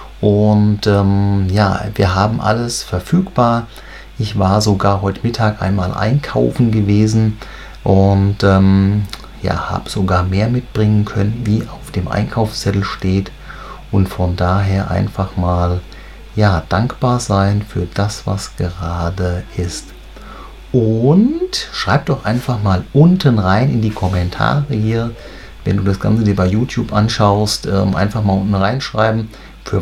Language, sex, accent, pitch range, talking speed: German, male, German, 95-115 Hz, 135 wpm